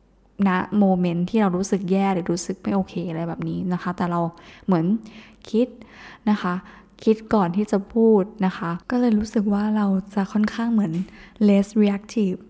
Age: 10-29